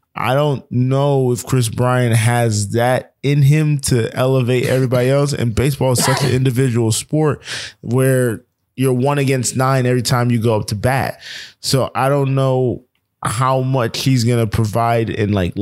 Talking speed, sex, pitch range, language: 175 wpm, male, 115-130 Hz, English